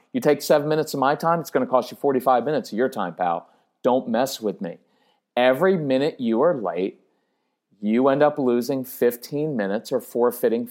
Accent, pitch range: American, 125-165 Hz